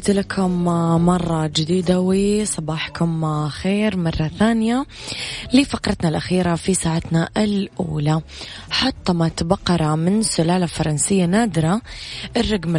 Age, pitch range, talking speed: 20-39, 155-185 Hz, 90 wpm